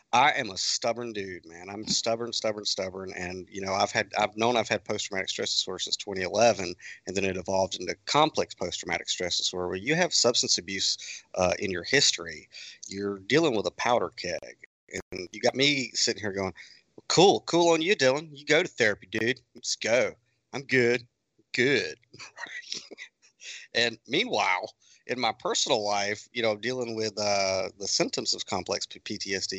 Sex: male